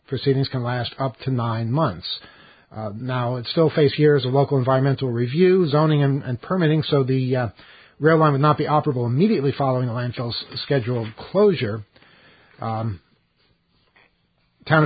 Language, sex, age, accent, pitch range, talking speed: English, male, 50-69, American, 125-160 Hz, 155 wpm